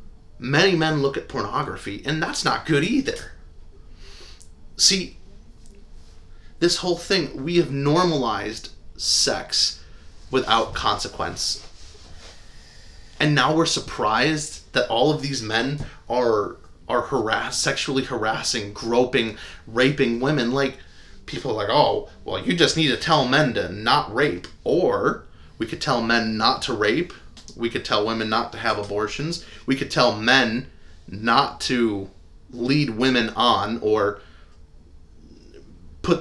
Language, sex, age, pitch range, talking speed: English, male, 30-49, 80-135 Hz, 130 wpm